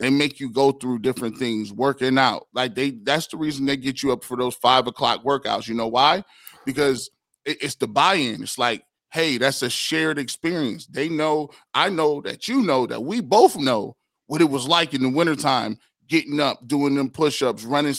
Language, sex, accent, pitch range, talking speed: English, male, American, 130-160 Hz, 205 wpm